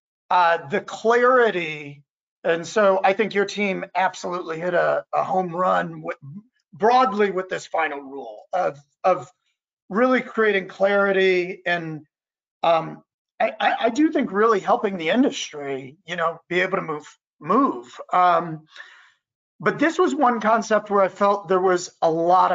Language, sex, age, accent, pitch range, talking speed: English, male, 40-59, American, 175-225 Hz, 150 wpm